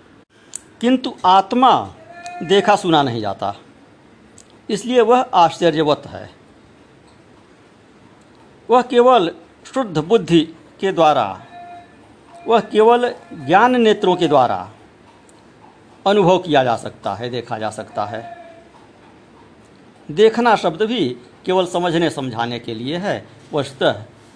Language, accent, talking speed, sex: Hindi, native, 100 wpm, male